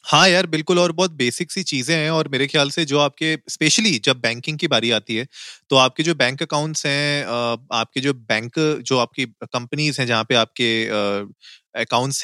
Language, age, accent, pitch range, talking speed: Hindi, 30-49, native, 120-150 Hz, 190 wpm